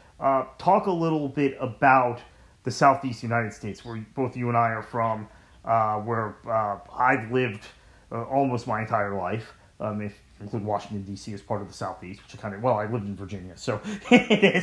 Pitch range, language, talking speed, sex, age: 115-155 Hz, English, 195 wpm, male, 30-49